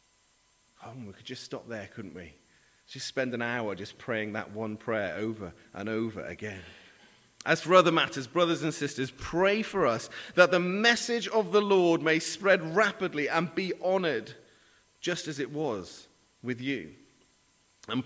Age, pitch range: 30-49, 115-165 Hz